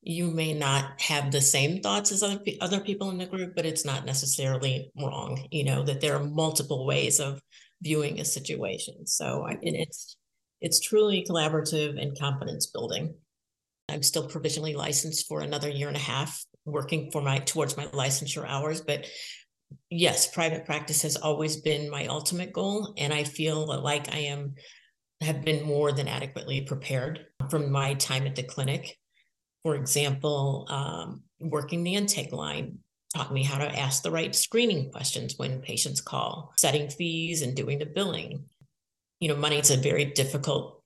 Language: English